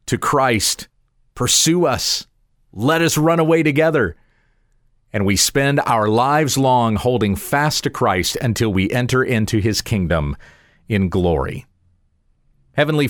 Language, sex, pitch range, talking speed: English, male, 110-150 Hz, 130 wpm